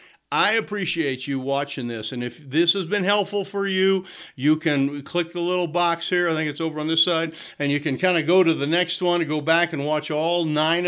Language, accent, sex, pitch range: English, American, male, 140-175 Hz